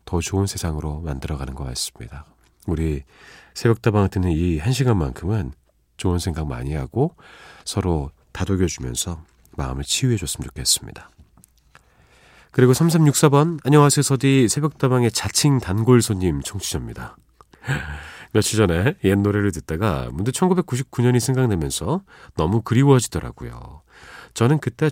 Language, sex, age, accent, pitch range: Korean, male, 40-59, native, 80-130 Hz